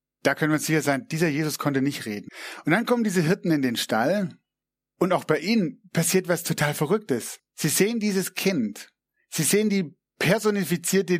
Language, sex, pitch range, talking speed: German, male, 145-185 Hz, 190 wpm